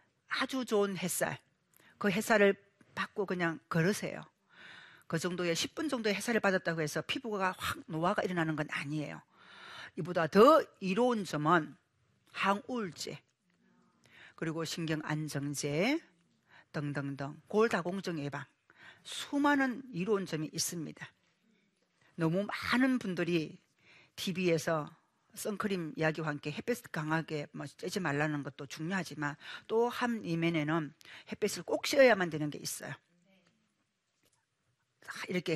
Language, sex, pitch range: Korean, female, 160-225 Hz